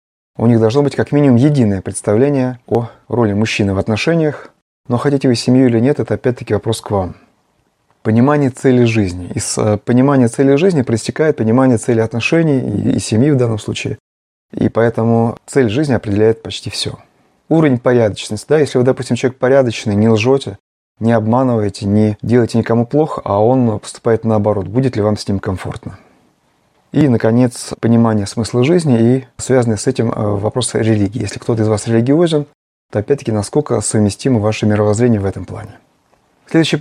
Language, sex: Russian, male